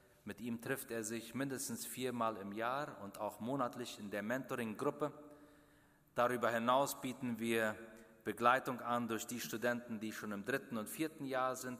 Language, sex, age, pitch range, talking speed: German, male, 40-59, 110-140 Hz, 165 wpm